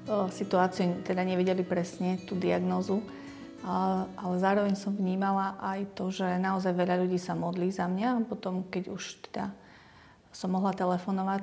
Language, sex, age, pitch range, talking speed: Slovak, female, 30-49, 185-205 Hz, 145 wpm